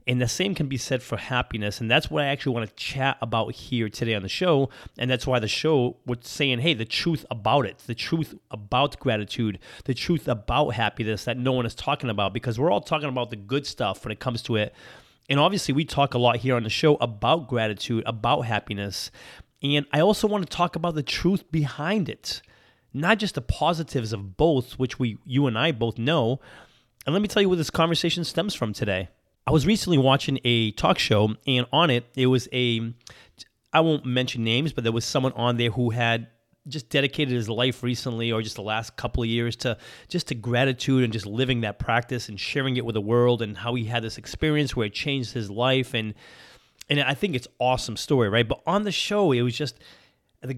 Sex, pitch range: male, 115-145 Hz